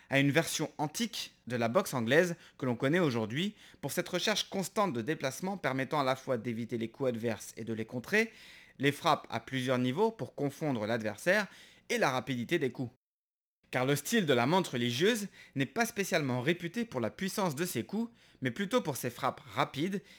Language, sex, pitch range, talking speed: French, male, 120-185 Hz, 195 wpm